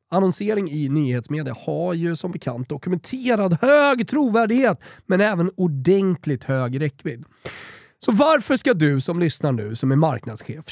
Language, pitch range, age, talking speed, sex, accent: Swedish, 135-215 Hz, 30-49, 140 wpm, male, native